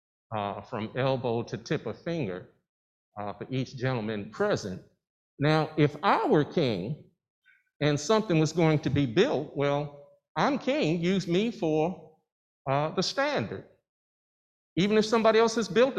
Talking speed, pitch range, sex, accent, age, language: 145 wpm, 135-195 Hz, male, American, 50-69, English